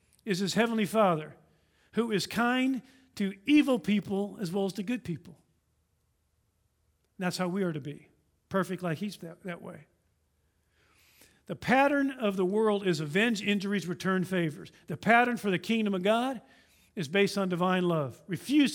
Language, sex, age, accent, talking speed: English, male, 50-69, American, 165 wpm